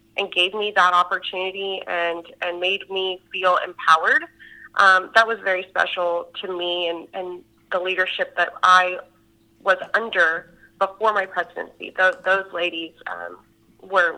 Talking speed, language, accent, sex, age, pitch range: 145 wpm, English, American, female, 30-49, 180-205 Hz